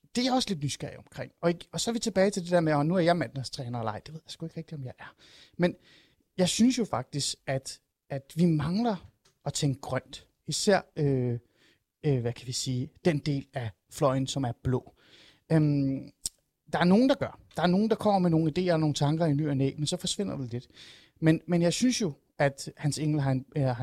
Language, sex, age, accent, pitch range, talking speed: Danish, male, 30-49, native, 135-175 Hz, 235 wpm